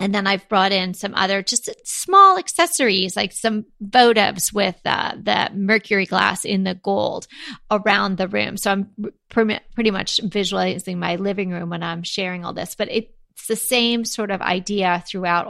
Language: English